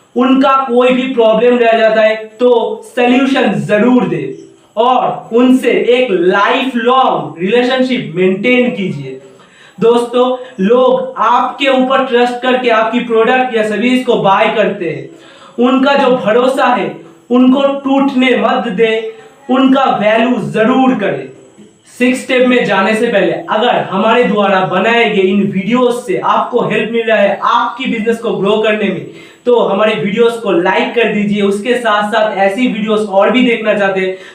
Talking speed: 150 wpm